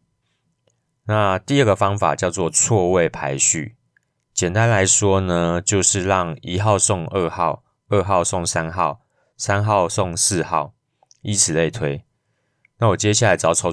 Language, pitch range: Chinese, 85-125 Hz